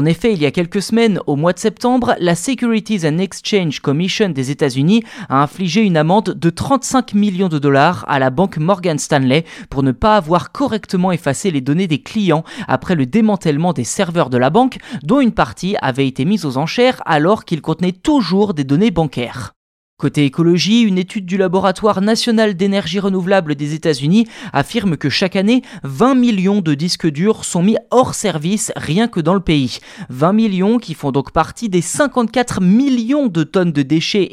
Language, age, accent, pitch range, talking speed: French, 20-39, French, 150-215 Hz, 190 wpm